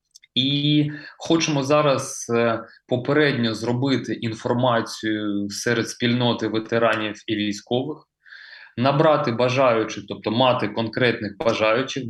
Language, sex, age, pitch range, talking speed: Ukrainian, male, 20-39, 110-135 Hz, 85 wpm